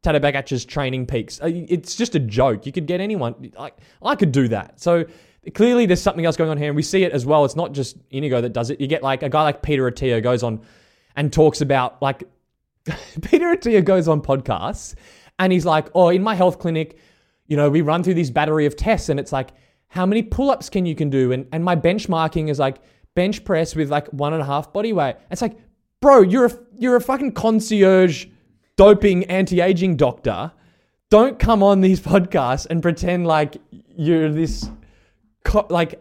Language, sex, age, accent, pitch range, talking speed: English, male, 20-39, Australian, 140-185 Hz, 205 wpm